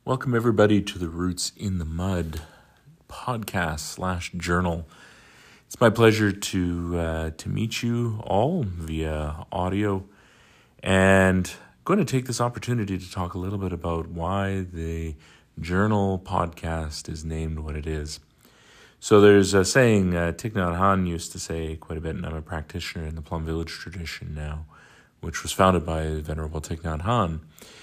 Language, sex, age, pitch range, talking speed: English, male, 40-59, 80-95 Hz, 165 wpm